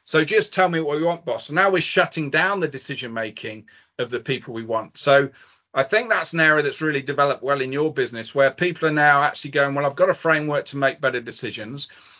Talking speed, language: 240 wpm, English